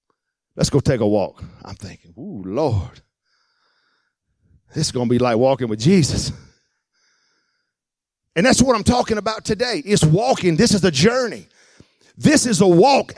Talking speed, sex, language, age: 160 wpm, male, English, 50-69